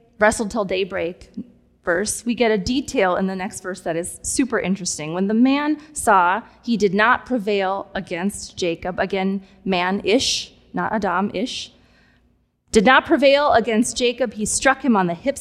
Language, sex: English, female